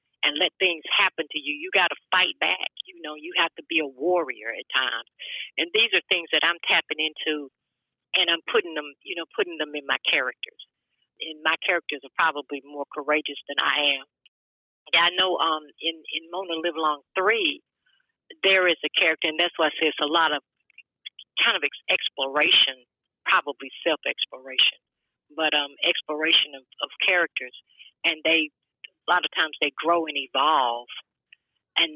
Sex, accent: female, American